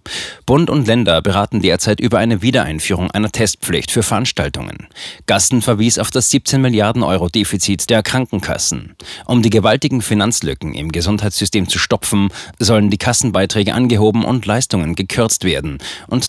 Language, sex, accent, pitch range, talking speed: German, male, German, 95-120 Hz, 145 wpm